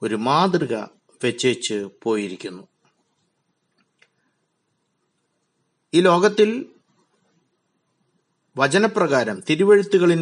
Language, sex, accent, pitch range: Malayalam, male, native, 130-205 Hz